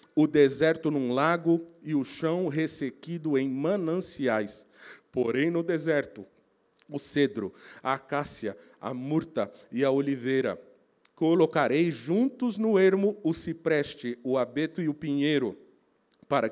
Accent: Brazilian